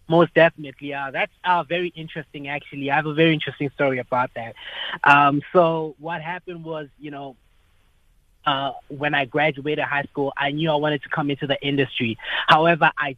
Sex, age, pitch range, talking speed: male, 20-39, 135-150 Hz, 185 wpm